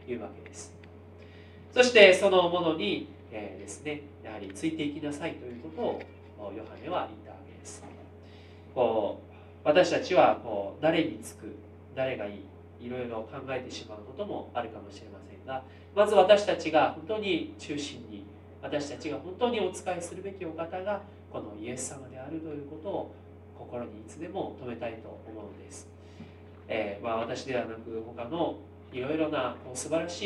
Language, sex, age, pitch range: Japanese, male, 40-59, 105-150 Hz